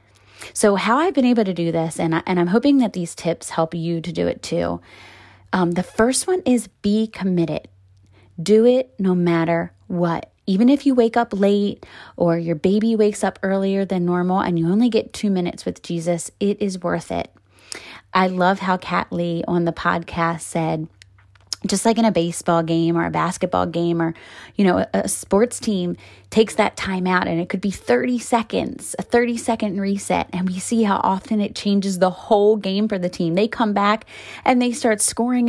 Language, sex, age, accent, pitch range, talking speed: English, female, 20-39, American, 170-220 Hz, 200 wpm